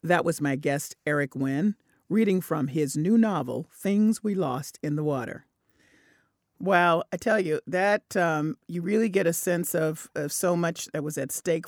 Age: 40-59